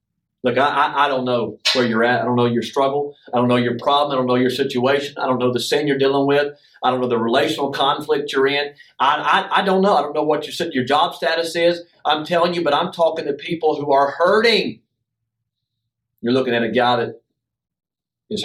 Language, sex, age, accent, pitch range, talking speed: English, male, 40-59, American, 120-145 Hz, 230 wpm